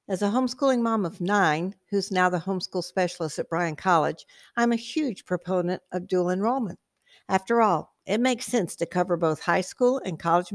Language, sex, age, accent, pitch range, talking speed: English, female, 60-79, American, 180-225 Hz, 190 wpm